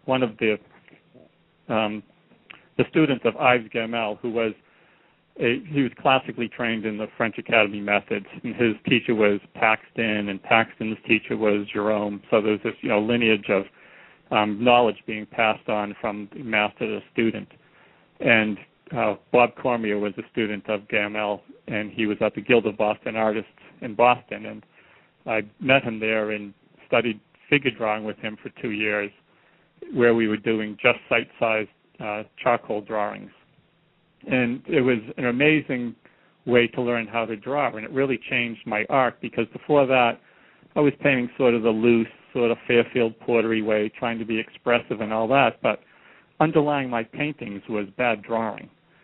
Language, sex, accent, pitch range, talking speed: English, male, American, 105-120 Hz, 165 wpm